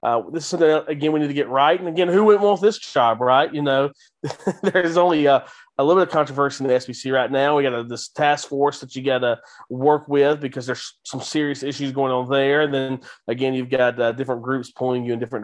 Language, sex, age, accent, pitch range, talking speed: English, male, 30-49, American, 125-145 Hz, 255 wpm